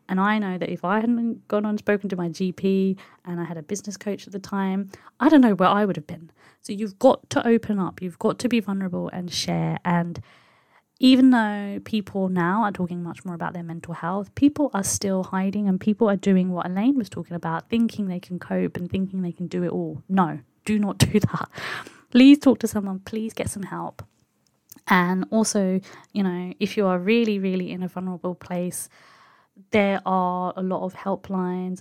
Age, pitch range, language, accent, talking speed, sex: 20-39, 175-205 Hz, English, British, 215 wpm, female